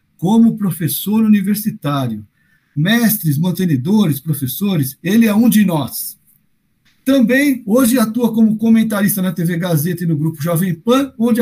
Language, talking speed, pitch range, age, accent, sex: Portuguese, 130 wpm, 170-230 Hz, 60-79, Brazilian, male